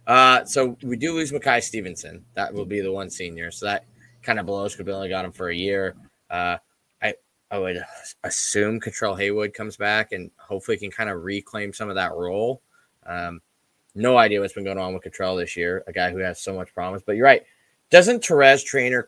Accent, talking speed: American, 215 wpm